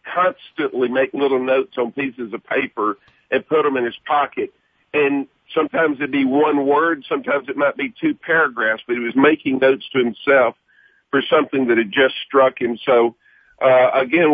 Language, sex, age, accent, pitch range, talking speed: English, male, 50-69, American, 125-155 Hz, 180 wpm